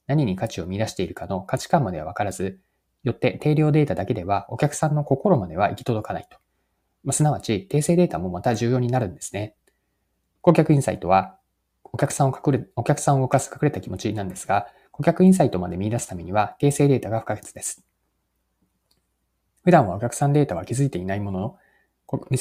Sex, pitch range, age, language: male, 95-140 Hz, 20-39, Japanese